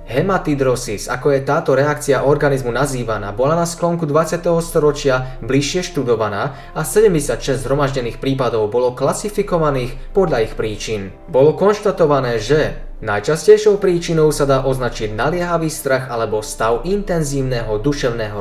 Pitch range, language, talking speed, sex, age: 120-170 Hz, Slovak, 120 wpm, male, 20-39